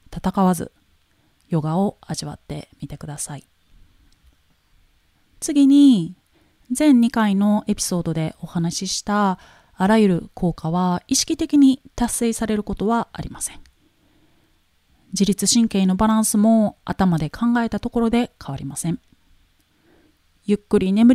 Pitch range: 145-235 Hz